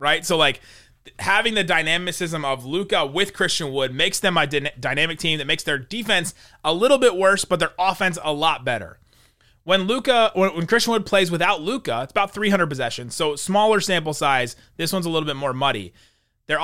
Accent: American